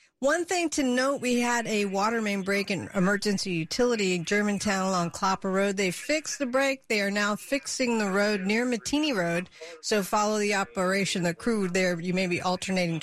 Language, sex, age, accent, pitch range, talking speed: English, female, 50-69, American, 195-245 Hz, 195 wpm